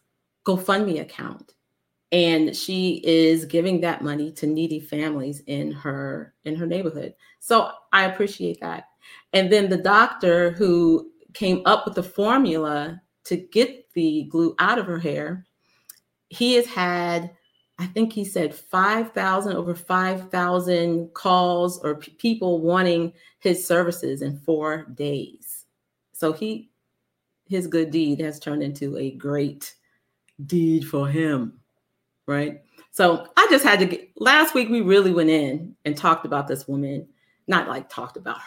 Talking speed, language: 150 wpm, English